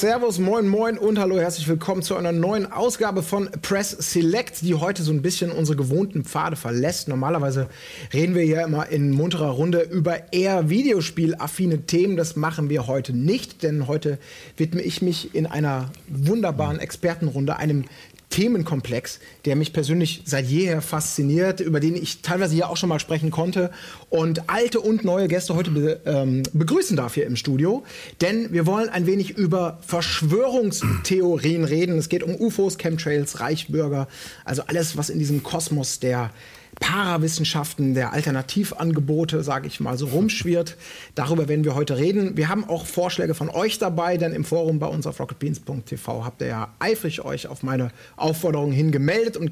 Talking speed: 170 wpm